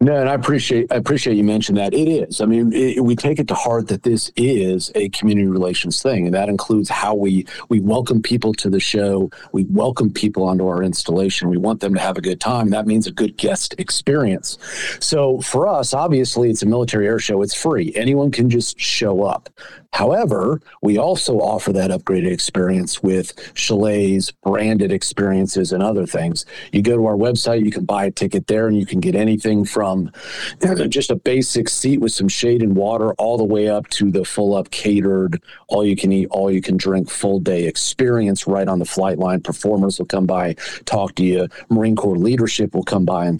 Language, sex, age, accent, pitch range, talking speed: English, male, 50-69, American, 95-115 Hz, 200 wpm